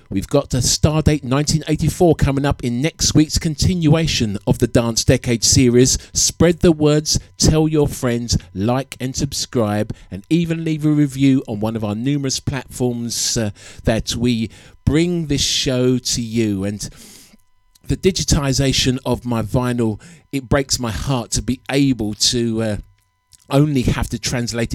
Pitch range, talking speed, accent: 110-140 Hz, 155 wpm, British